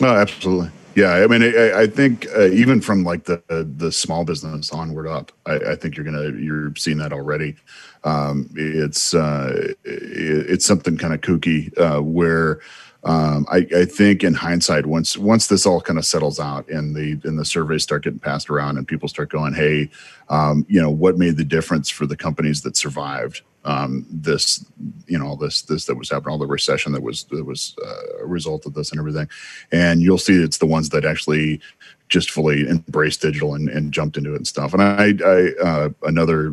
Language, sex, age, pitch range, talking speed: English, male, 40-59, 75-85 Hz, 205 wpm